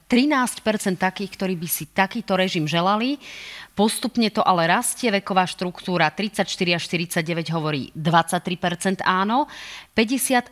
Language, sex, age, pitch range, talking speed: Slovak, female, 30-49, 165-210 Hz, 115 wpm